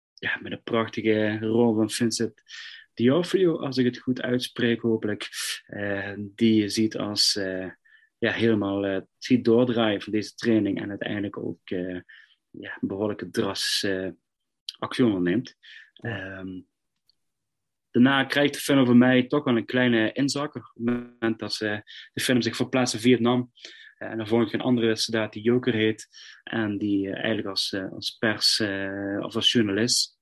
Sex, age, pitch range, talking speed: male, 30-49, 105-125 Hz, 170 wpm